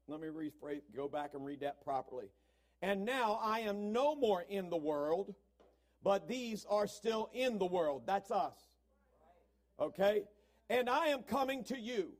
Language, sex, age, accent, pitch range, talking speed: English, male, 50-69, American, 185-250 Hz, 160 wpm